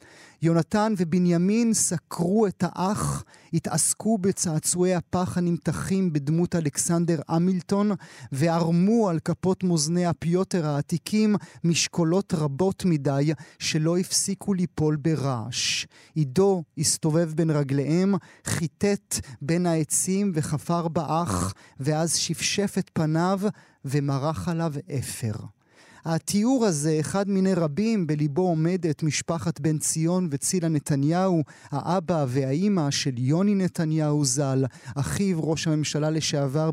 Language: Hebrew